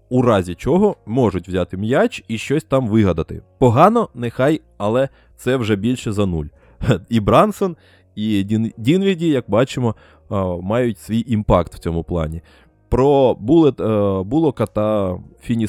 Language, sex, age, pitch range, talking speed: Ukrainian, male, 20-39, 90-115 Hz, 140 wpm